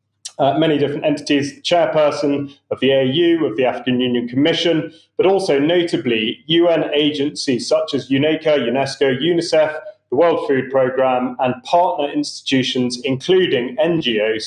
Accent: British